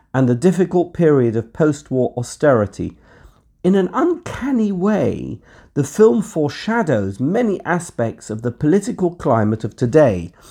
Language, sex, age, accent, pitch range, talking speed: English, male, 50-69, British, 115-175 Hz, 125 wpm